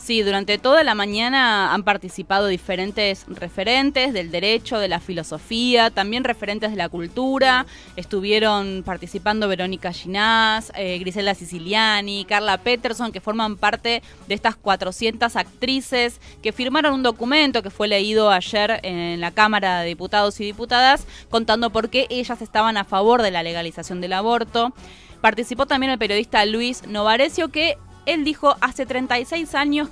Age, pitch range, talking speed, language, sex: 20-39, 195-245 Hz, 150 wpm, Spanish, female